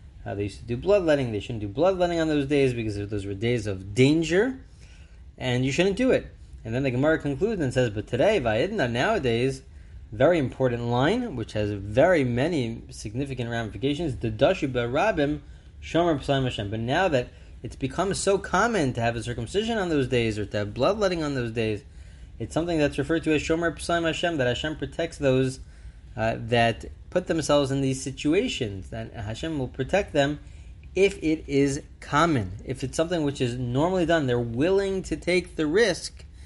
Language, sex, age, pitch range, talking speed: English, male, 20-39, 110-150 Hz, 185 wpm